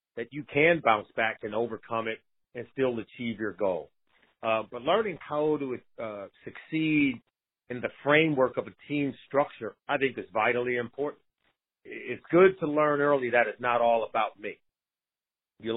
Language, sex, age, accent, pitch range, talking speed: English, male, 40-59, American, 125-155 Hz, 165 wpm